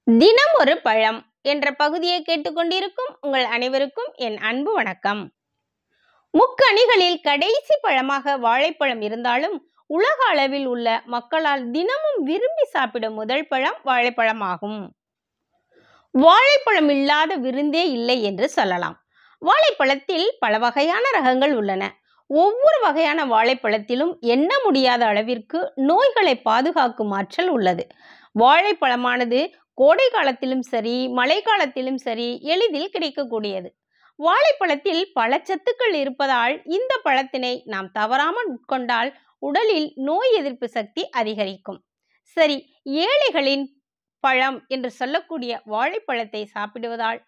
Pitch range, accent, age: 235-325 Hz, native, 20-39